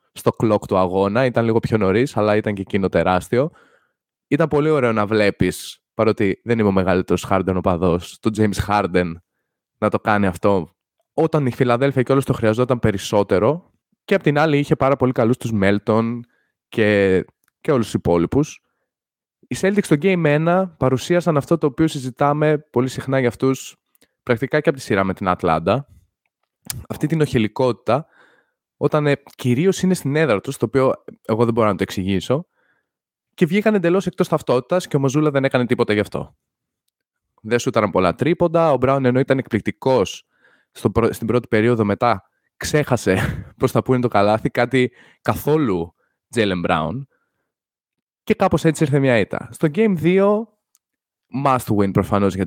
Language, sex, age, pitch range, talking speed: Greek, male, 20-39, 105-150 Hz, 170 wpm